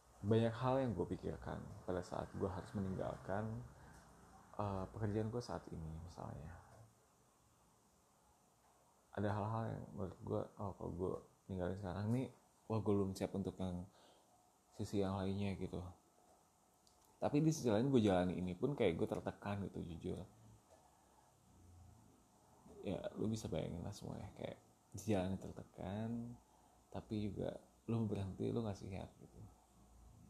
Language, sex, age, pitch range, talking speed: Indonesian, male, 20-39, 90-110 Hz, 130 wpm